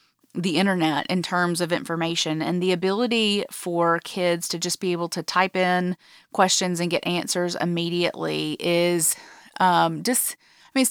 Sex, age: female, 30-49